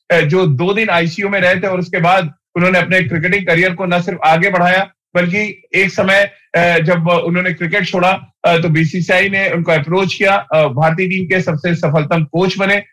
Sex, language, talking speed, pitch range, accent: male, Hindi, 180 wpm, 170-190 Hz, native